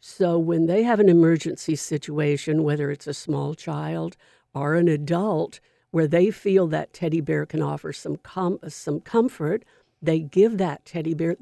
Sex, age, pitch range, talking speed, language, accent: female, 60-79, 160-200 Hz, 170 wpm, English, American